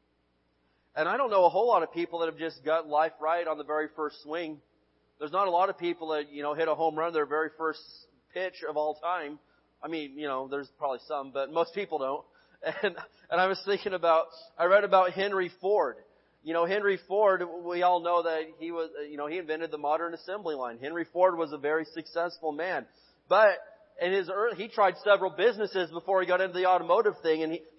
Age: 30-49